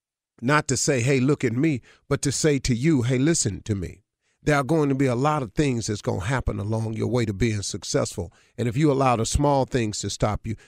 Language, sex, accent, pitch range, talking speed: English, male, American, 110-145 Hz, 255 wpm